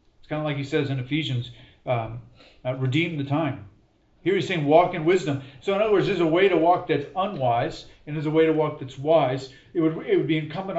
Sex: male